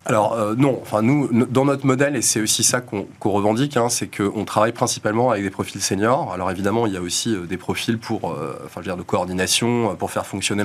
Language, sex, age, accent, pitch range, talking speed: French, male, 20-39, French, 105-130 Hz, 240 wpm